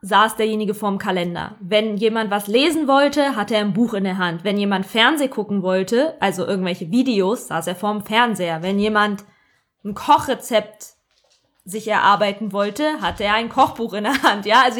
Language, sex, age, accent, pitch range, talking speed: German, female, 20-39, German, 210-260 Hz, 180 wpm